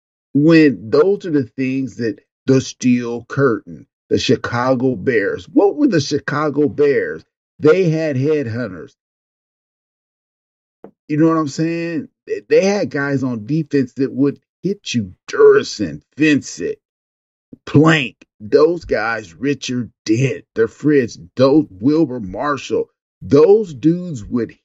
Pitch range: 125-170 Hz